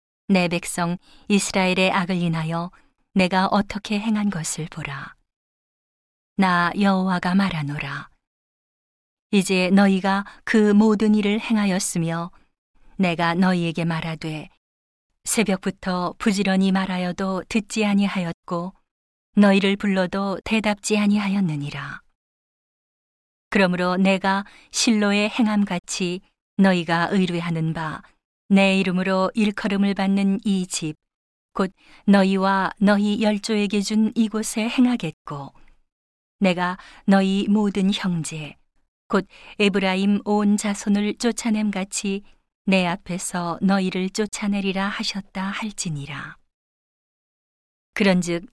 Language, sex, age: Korean, female, 40-59